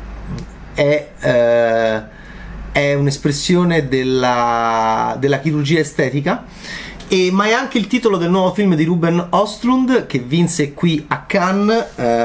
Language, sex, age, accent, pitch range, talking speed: Italian, male, 30-49, native, 135-190 Hz, 120 wpm